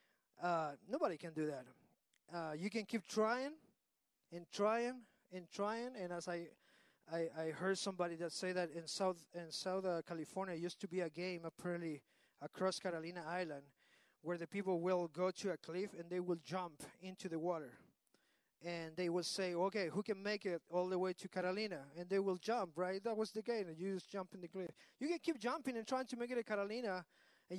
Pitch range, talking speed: 175-230 Hz, 205 wpm